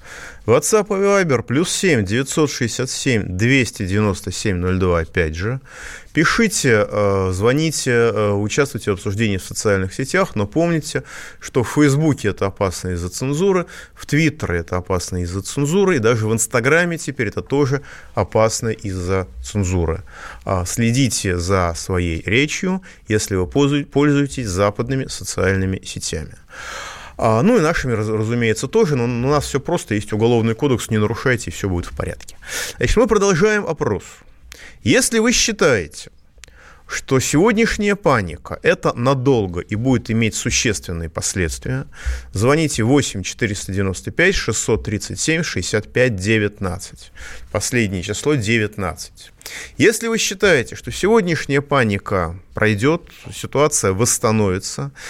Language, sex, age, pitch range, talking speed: Russian, male, 30-49, 100-145 Hz, 115 wpm